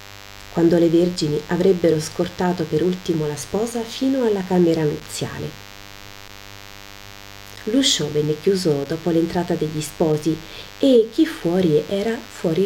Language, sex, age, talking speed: Italian, female, 30-49, 120 wpm